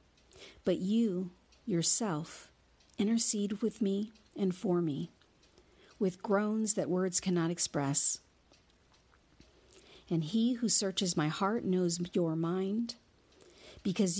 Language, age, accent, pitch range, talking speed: English, 50-69, American, 150-210 Hz, 105 wpm